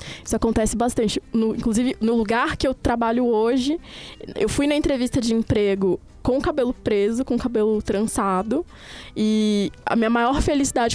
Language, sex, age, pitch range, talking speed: Portuguese, female, 20-39, 215-255 Hz, 165 wpm